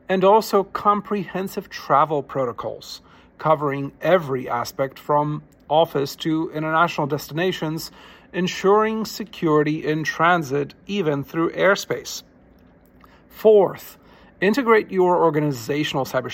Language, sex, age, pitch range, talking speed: English, male, 40-59, 140-180 Hz, 90 wpm